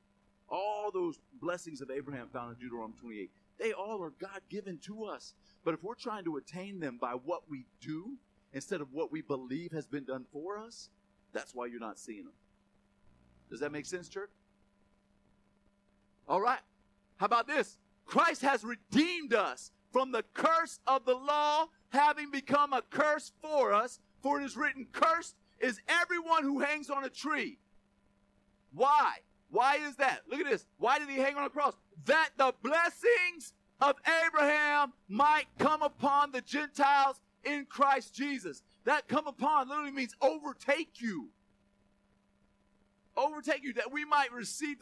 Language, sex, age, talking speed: Hungarian, male, 50-69, 160 wpm